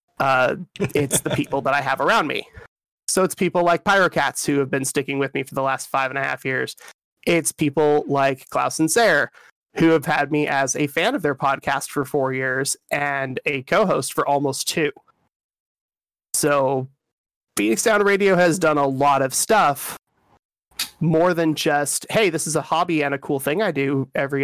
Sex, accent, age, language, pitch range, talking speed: male, American, 30-49, English, 140-165 Hz, 190 wpm